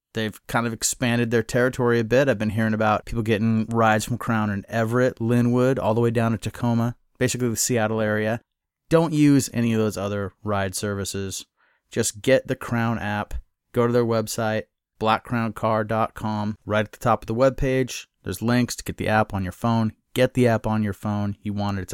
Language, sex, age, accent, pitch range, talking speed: English, male, 30-49, American, 105-120 Hz, 200 wpm